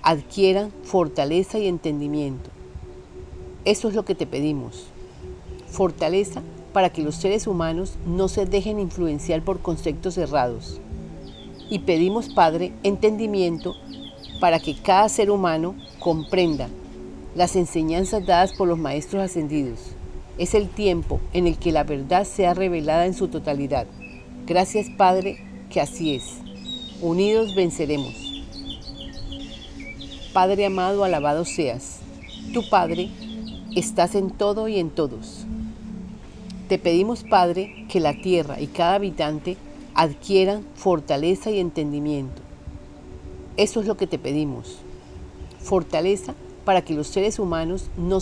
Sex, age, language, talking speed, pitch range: female, 40-59, Spanish, 120 wpm, 150-195 Hz